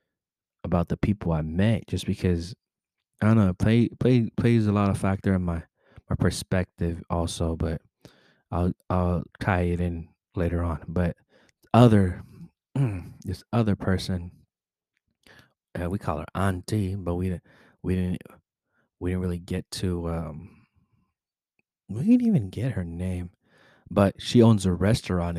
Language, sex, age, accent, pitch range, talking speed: English, male, 20-39, American, 85-100 Hz, 145 wpm